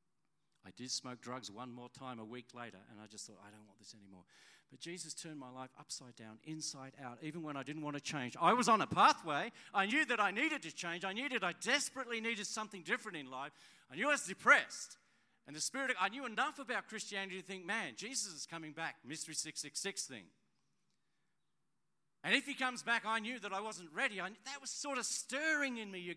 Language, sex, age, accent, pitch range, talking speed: English, male, 40-59, Australian, 125-205 Hz, 225 wpm